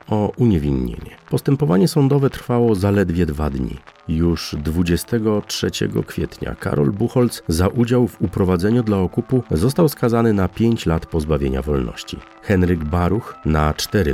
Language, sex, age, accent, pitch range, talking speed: Polish, male, 40-59, native, 80-115 Hz, 125 wpm